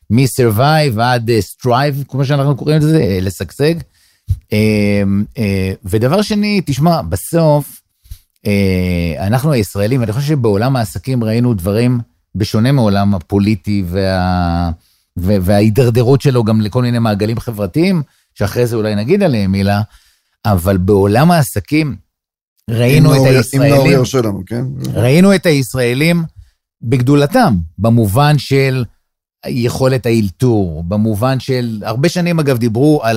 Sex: male